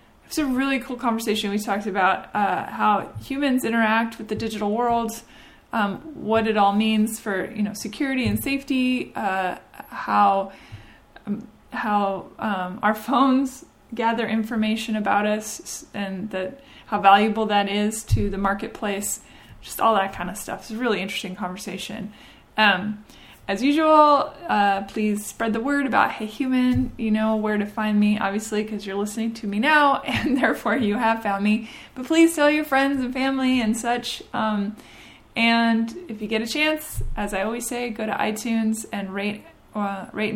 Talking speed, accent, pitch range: 170 wpm, American, 205-240 Hz